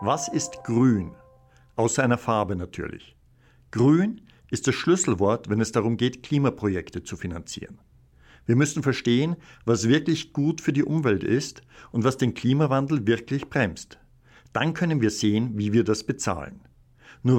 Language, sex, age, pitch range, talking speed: German, male, 60-79, 100-130 Hz, 150 wpm